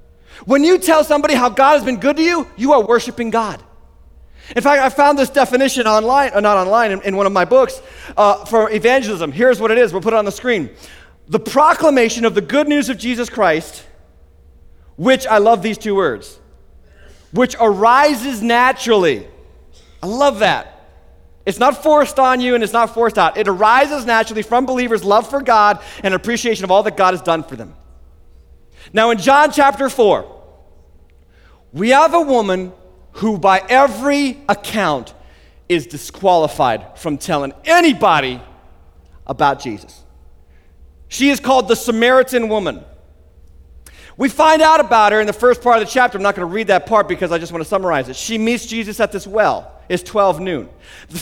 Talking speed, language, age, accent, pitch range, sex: 180 wpm, English, 30-49, American, 170-250 Hz, male